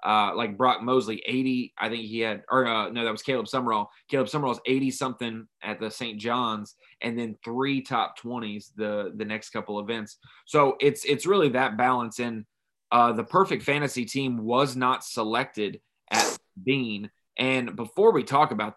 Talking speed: 180 wpm